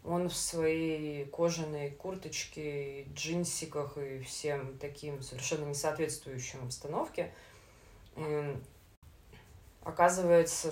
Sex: female